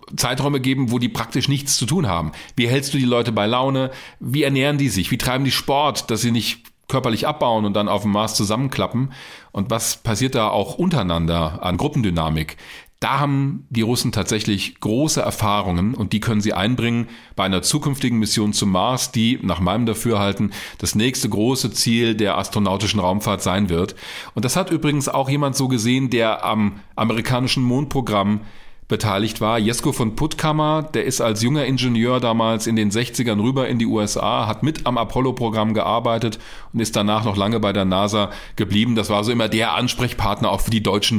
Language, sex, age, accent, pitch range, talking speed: German, male, 40-59, German, 105-125 Hz, 185 wpm